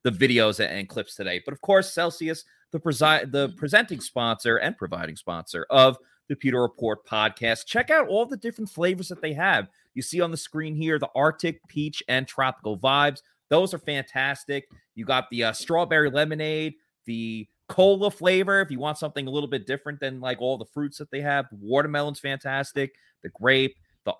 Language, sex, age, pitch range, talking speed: English, male, 30-49, 115-155 Hz, 185 wpm